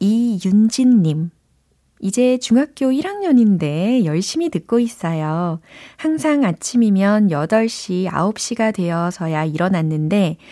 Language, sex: Korean, female